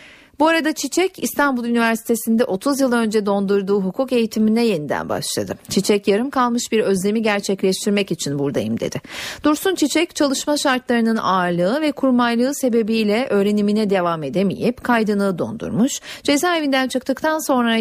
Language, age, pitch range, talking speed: Turkish, 40-59, 195-245 Hz, 130 wpm